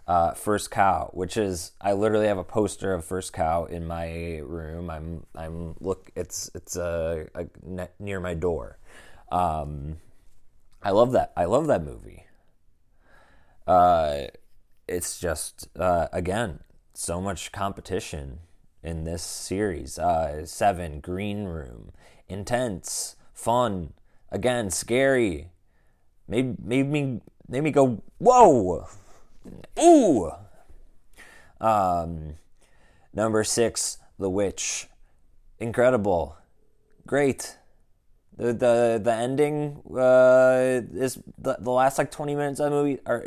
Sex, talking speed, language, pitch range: male, 120 wpm, English, 90-125 Hz